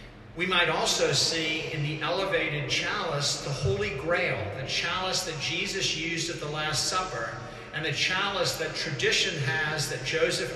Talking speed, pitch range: 160 wpm, 140-175 Hz